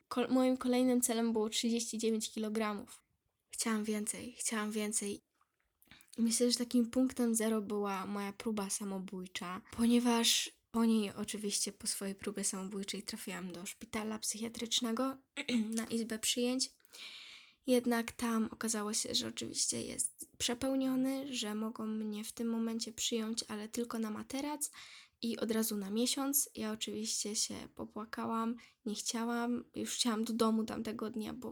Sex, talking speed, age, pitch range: female, 135 wpm, 10-29, 215-245 Hz